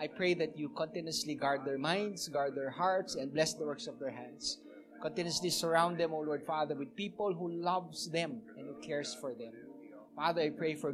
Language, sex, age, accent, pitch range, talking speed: English, male, 20-39, Filipino, 155-210 Hz, 210 wpm